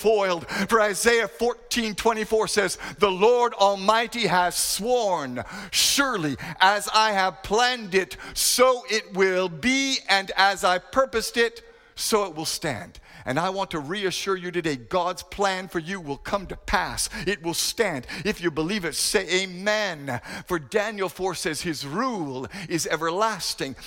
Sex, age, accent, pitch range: male, 50-69, American, 160-205 Hz